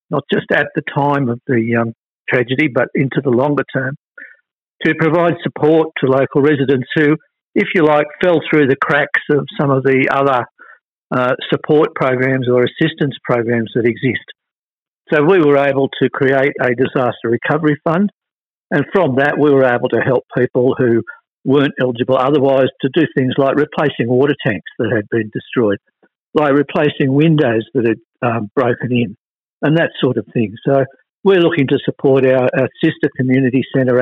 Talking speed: 175 wpm